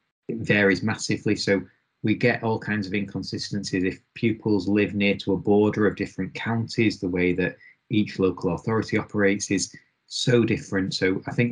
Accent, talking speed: British, 170 wpm